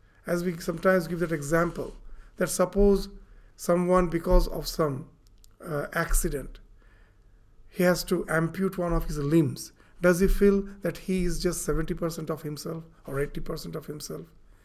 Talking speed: 150 wpm